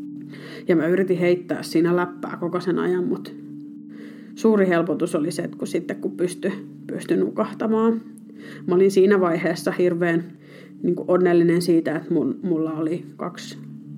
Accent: native